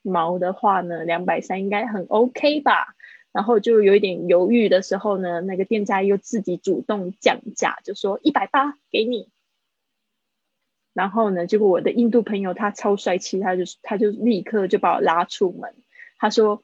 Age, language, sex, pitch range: 20-39, Chinese, female, 185-235 Hz